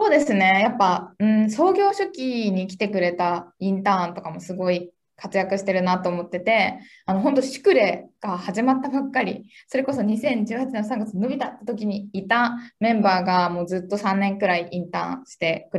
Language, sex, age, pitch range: Japanese, female, 20-39, 180-235 Hz